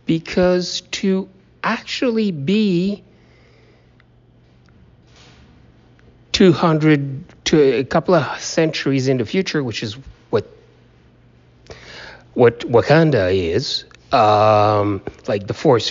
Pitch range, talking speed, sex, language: 135-190 Hz, 85 wpm, male, English